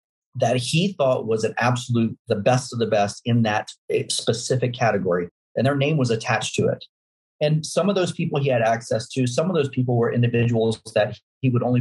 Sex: male